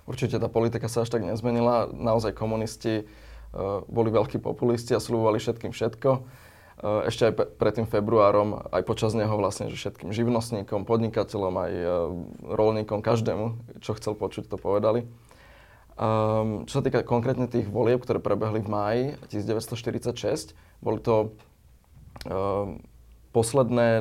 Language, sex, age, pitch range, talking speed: Slovak, male, 20-39, 105-120 Hz, 125 wpm